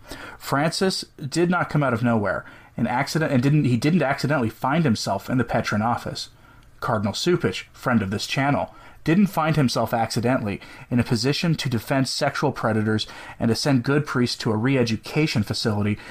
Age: 30-49